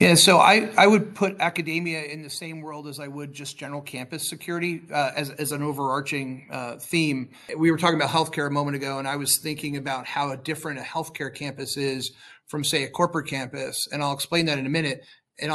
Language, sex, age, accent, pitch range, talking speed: English, male, 30-49, American, 140-165 Hz, 225 wpm